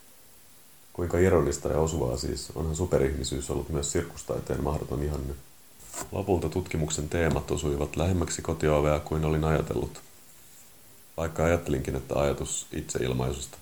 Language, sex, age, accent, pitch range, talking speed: Finnish, male, 30-49, native, 70-85 Hz, 115 wpm